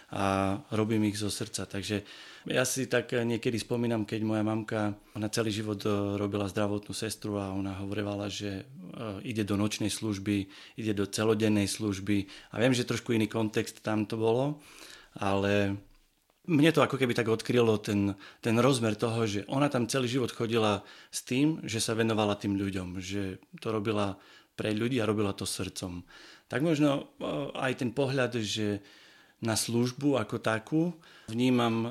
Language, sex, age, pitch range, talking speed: Slovak, male, 30-49, 105-125 Hz, 160 wpm